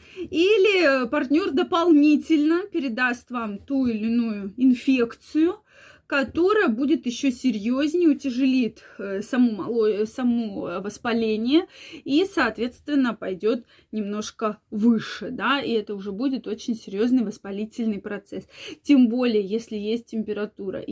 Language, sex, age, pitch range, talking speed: Russian, female, 20-39, 225-295 Hz, 105 wpm